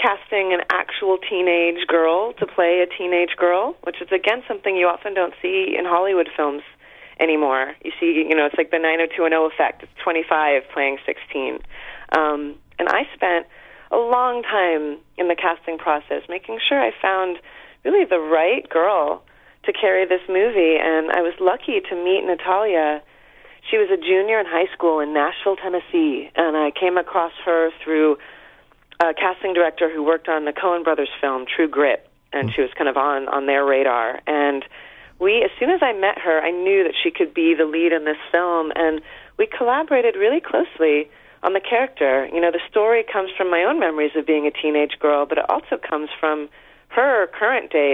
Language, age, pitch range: English, 30-49, 150-190 Hz